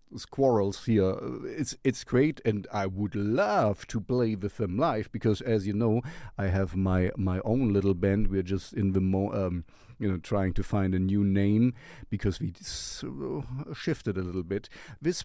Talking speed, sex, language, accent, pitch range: 185 wpm, male, English, German, 100-140 Hz